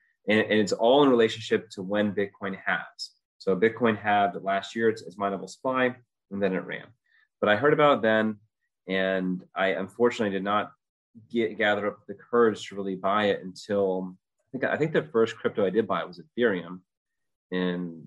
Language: English